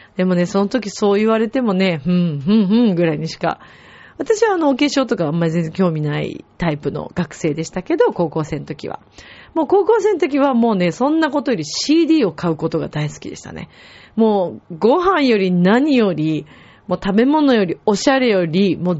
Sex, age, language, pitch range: female, 30-49, Japanese, 175-280 Hz